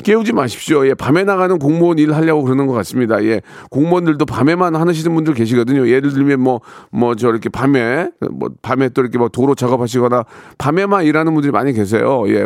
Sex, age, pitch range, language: male, 40-59, 120-165 Hz, Korean